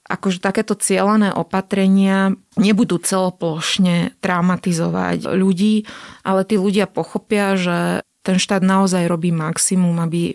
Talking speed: 110 wpm